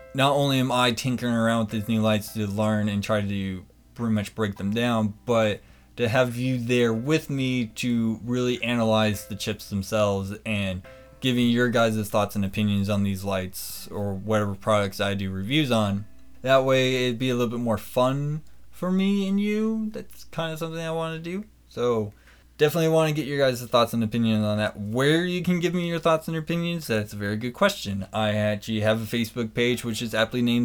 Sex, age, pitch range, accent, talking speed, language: male, 20-39, 105-130 Hz, American, 210 wpm, English